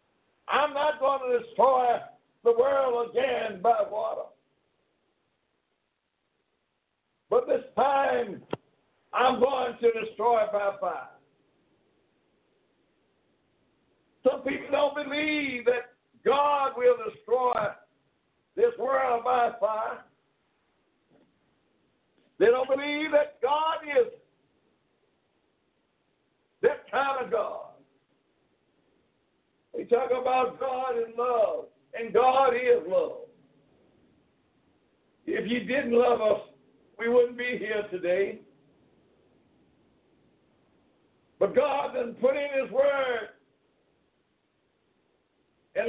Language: English